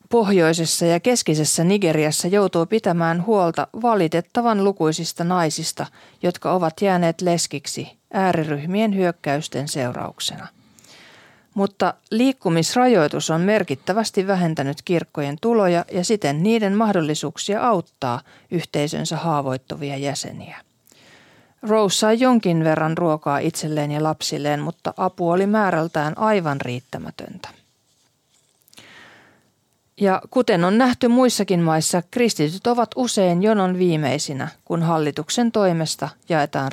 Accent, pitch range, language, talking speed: native, 155-210 Hz, Finnish, 100 wpm